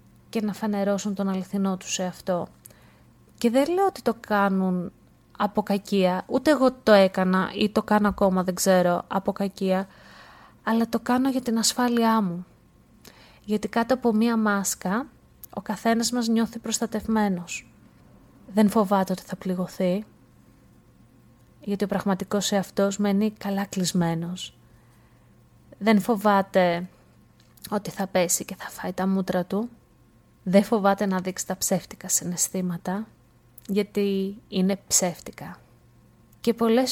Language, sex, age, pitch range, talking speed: Greek, female, 30-49, 190-230 Hz, 130 wpm